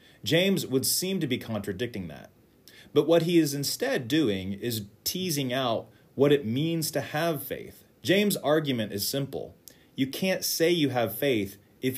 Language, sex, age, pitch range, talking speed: English, male, 30-49, 105-150 Hz, 165 wpm